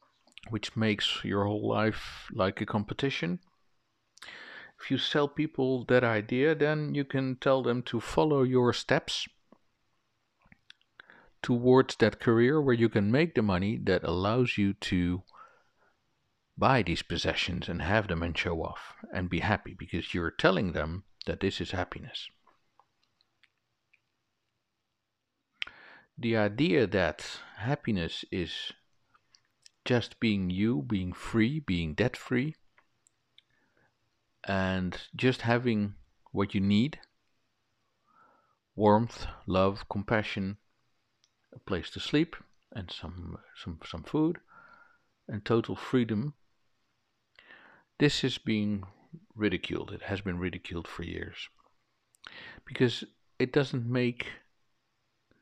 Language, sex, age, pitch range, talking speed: English, male, 50-69, 100-130 Hz, 110 wpm